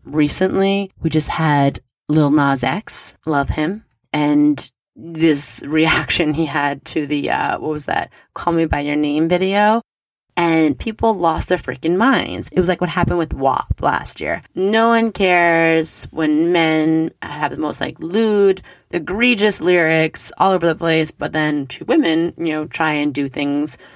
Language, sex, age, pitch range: English, female, 20-39, 145-170 Hz